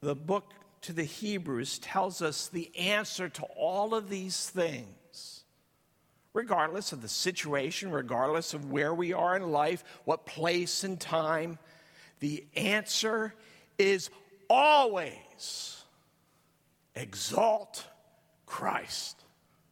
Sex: male